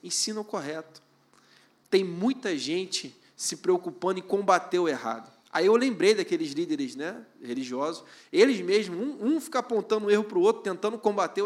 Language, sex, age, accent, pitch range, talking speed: Portuguese, male, 20-39, Brazilian, 140-210 Hz, 170 wpm